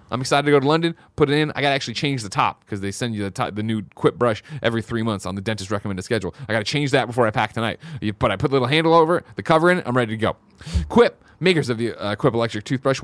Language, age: English, 30-49